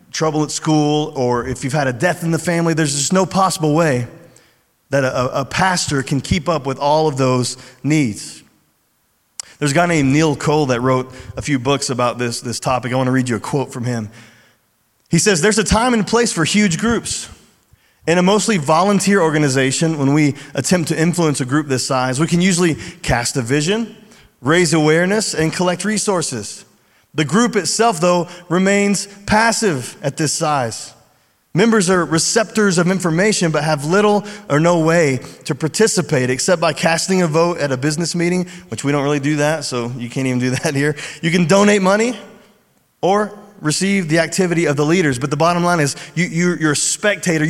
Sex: male